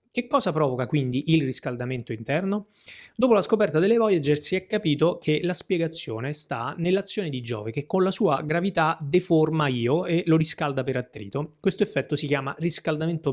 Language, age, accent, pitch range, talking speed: Italian, 30-49, native, 130-170 Hz, 175 wpm